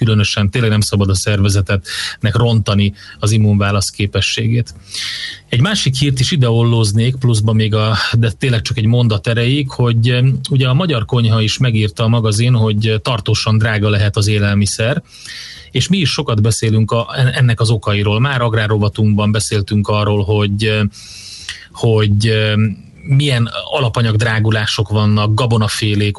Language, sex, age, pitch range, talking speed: Hungarian, male, 30-49, 105-125 Hz, 135 wpm